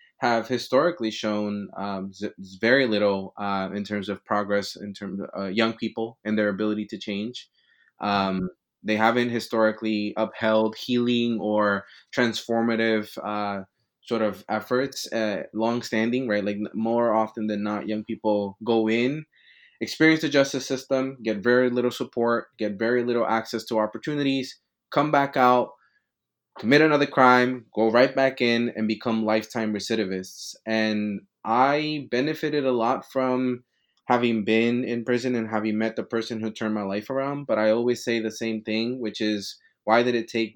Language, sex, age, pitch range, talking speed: English, male, 20-39, 105-120 Hz, 160 wpm